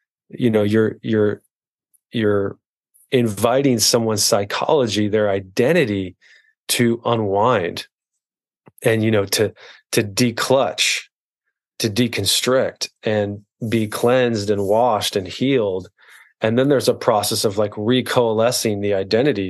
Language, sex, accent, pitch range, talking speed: English, male, American, 105-125 Hz, 115 wpm